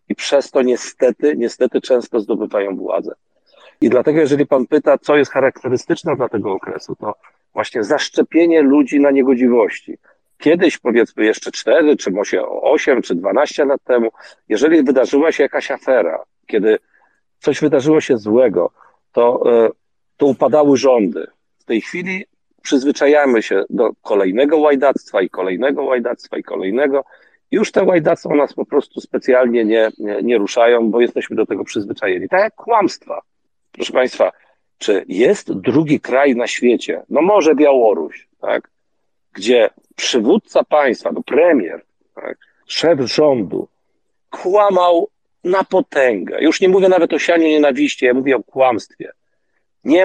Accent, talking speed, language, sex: native, 140 wpm, Polish, male